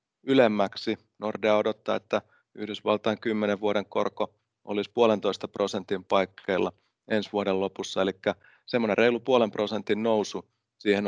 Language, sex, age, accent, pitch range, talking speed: Finnish, male, 30-49, native, 100-110 Hz, 115 wpm